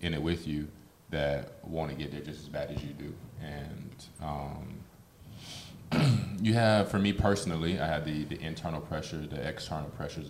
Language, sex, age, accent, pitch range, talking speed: English, male, 20-39, American, 75-85 Hz, 180 wpm